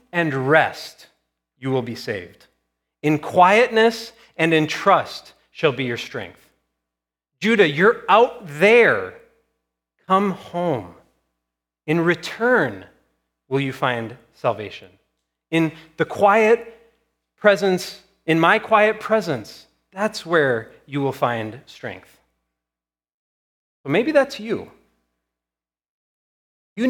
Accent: American